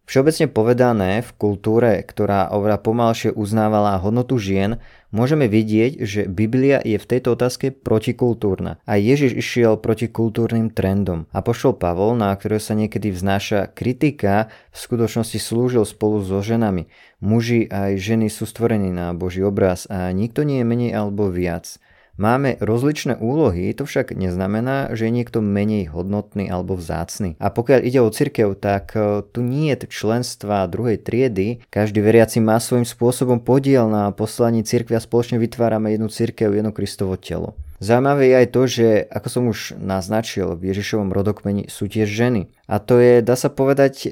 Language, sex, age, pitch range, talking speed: Slovak, male, 20-39, 100-120 Hz, 160 wpm